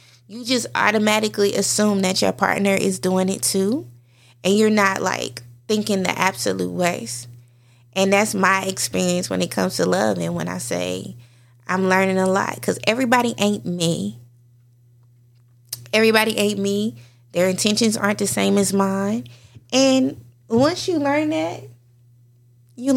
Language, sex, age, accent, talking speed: English, female, 20-39, American, 145 wpm